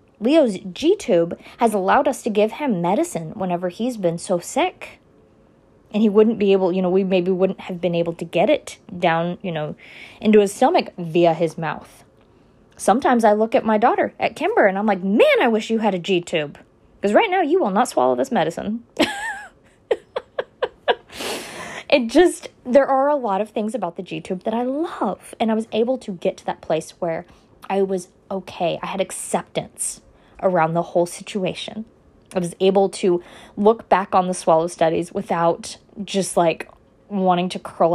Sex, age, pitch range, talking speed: female, 20-39, 180-235 Hz, 185 wpm